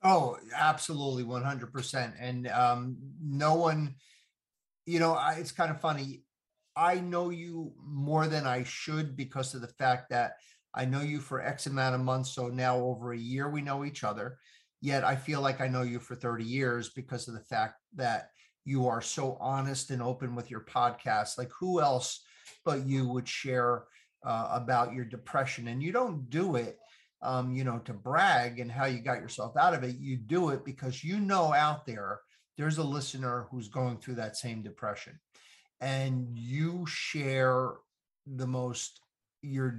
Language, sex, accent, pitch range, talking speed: English, male, American, 125-150 Hz, 180 wpm